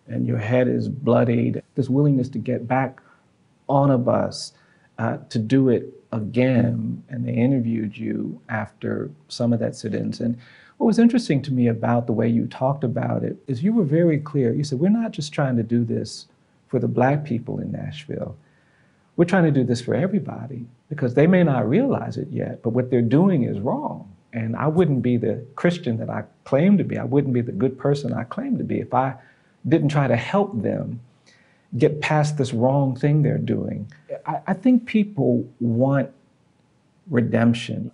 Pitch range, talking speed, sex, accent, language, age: 120-145 Hz, 190 wpm, male, American, English, 50-69